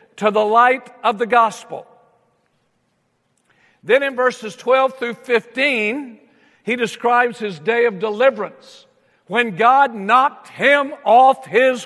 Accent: American